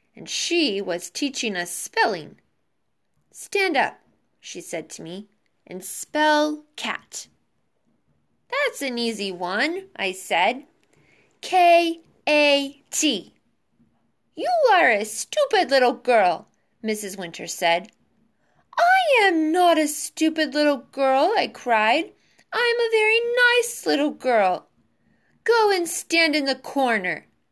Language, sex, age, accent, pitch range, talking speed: English, female, 20-39, American, 215-310 Hz, 115 wpm